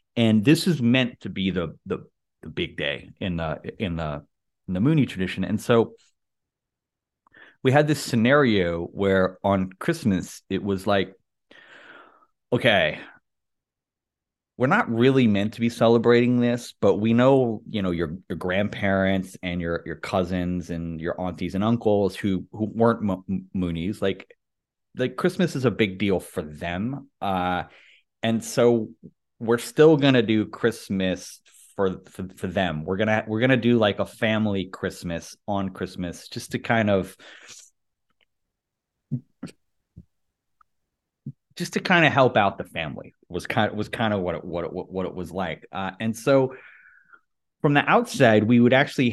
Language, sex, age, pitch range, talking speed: English, male, 30-49, 95-120 Hz, 160 wpm